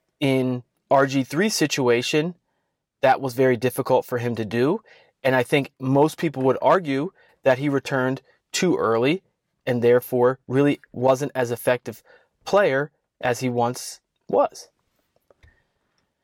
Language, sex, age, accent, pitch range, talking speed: English, male, 30-49, American, 125-150 Hz, 130 wpm